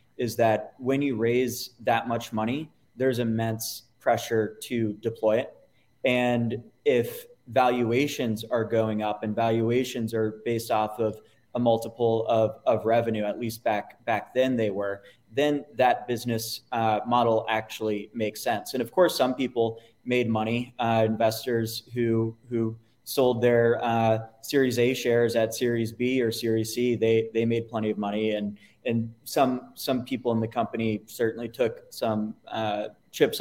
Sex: male